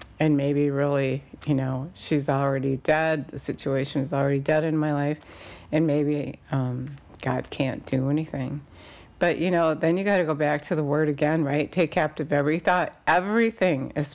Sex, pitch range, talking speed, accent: female, 140-160 Hz, 180 wpm, American